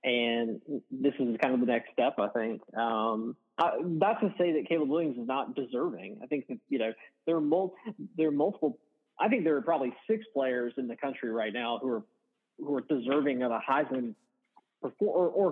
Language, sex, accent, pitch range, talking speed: English, male, American, 120-165 Hz, 215 wpm